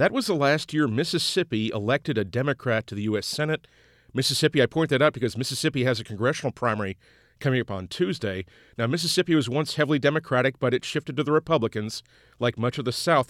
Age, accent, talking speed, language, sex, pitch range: 40-59, American, 205 wpm, English, male, 120-150 Hz